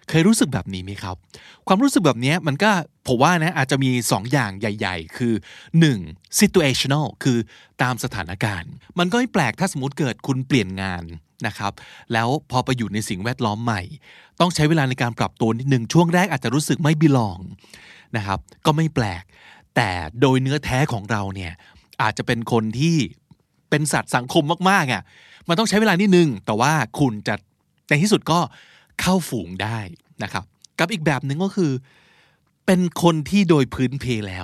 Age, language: 20-39, Thai